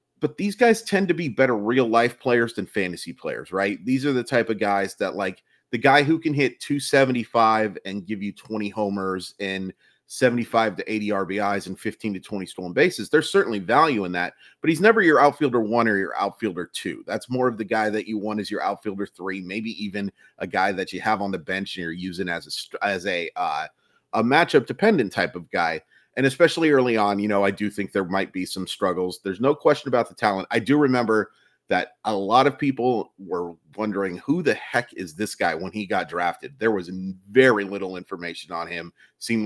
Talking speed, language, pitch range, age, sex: 215 wpm, English, 95-120 Hz, 30-49, male